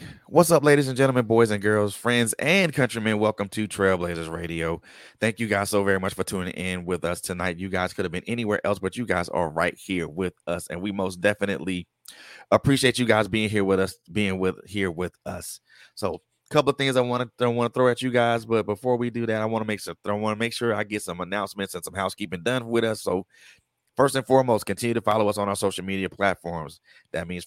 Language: English